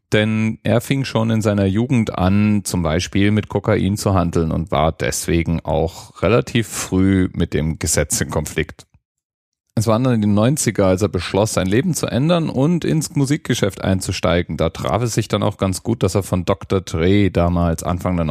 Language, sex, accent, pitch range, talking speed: German, male, German, 80-105 Hz, 190 wpm